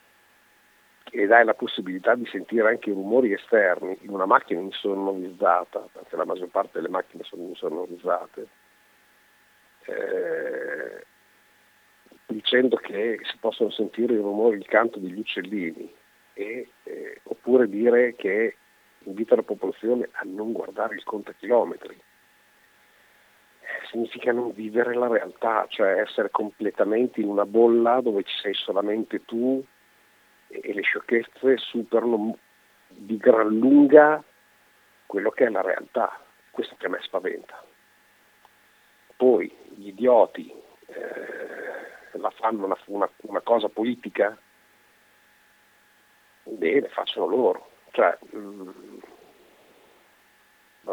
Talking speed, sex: 115 wpm, male